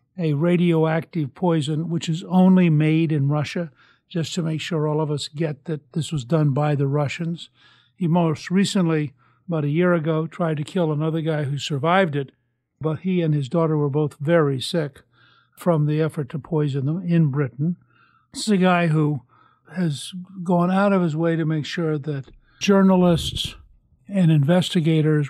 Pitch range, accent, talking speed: 145-175 Hz, American, 175 wpm